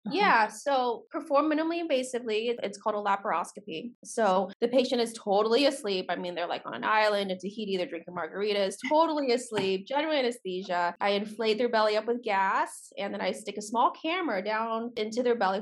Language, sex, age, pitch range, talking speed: English, female, 20-39, 190-240 Hz, 190 wpm